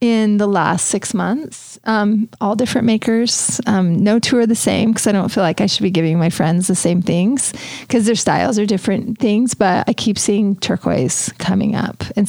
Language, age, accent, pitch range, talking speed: English, 30-49, American, 195-235 Hz, 210 wpm